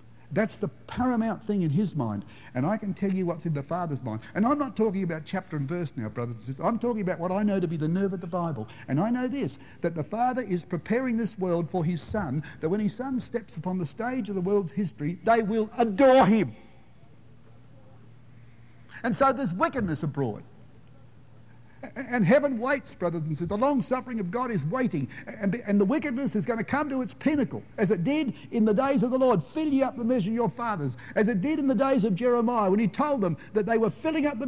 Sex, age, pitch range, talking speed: male, 60-79, 155-245 Hz, 235 wpm